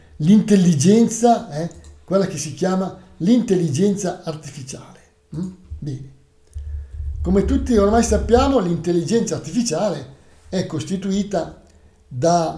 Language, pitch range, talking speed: Italian, 135-195 Hz, 90 wpm